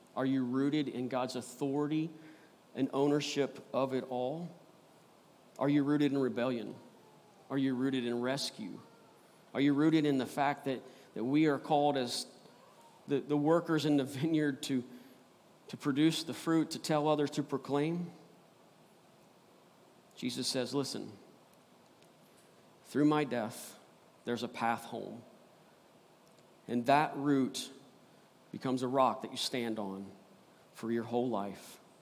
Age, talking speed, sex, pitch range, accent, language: 40-59, 135 wpm, male, 120-145 Hz, American, English